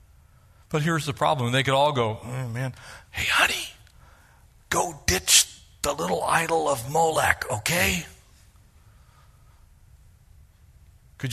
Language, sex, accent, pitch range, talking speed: English, male, American, 100-150 Hz, 110 wpm